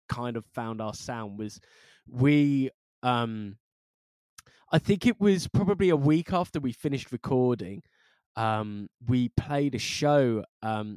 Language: English